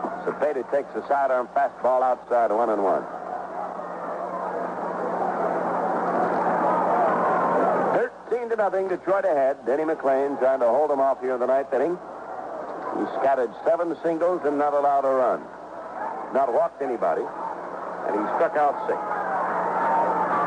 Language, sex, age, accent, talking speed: English, male, 60-79, American, 125 wpm